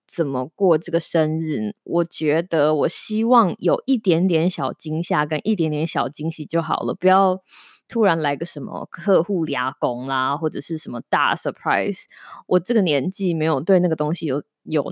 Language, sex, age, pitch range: Chinese, female, 20-39, 155-195 Hz